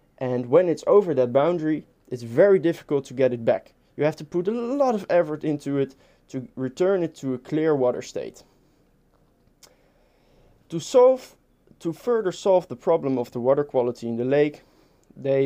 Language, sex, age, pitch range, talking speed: English, male, 20-39, 130-175 Hz, 180 wpm